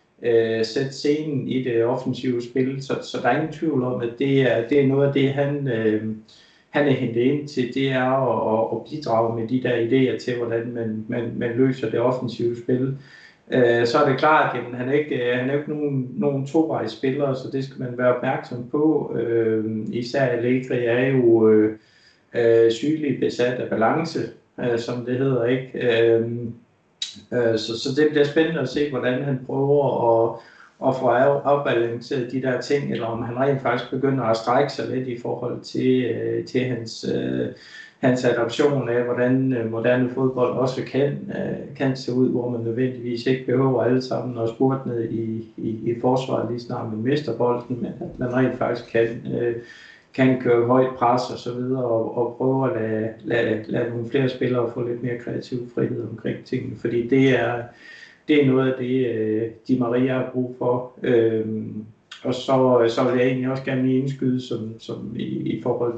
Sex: male